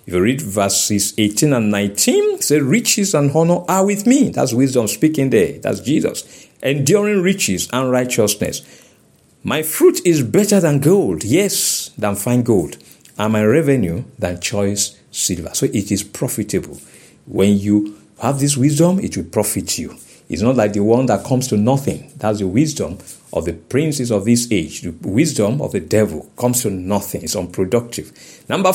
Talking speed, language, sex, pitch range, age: 170 wpm, English, male, 110-175 Hz, 50-69